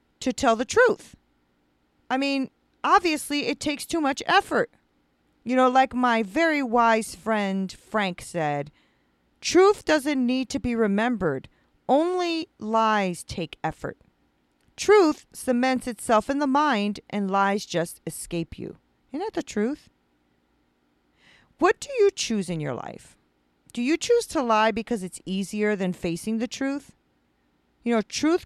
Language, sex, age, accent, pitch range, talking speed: English, female, 40-59, American, 185-290 Hz, 145 wpm